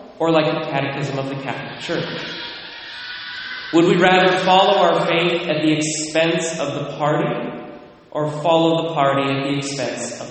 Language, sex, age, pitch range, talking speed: English, male, 30-49, 145-205 Hz, 165 wpm